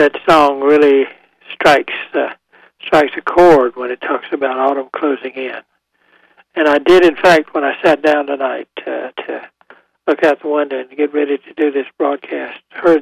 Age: 60-79